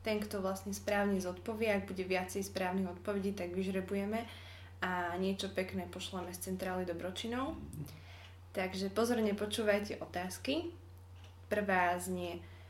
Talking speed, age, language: 120 wpm, 20-39, Slovak